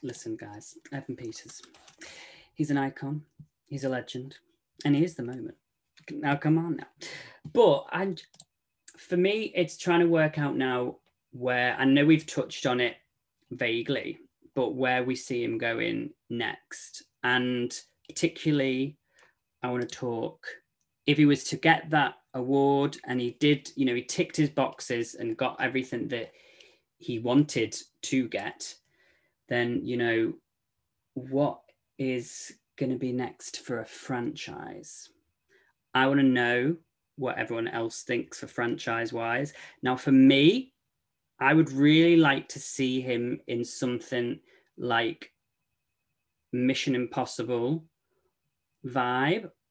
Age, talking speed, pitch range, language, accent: 20-39, 135 wpm, 125-150 Hz, English, British